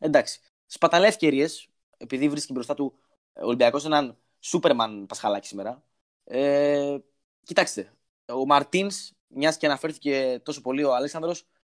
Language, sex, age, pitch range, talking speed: Greek, male, 20-39, 120-175 Hz, 120 wpm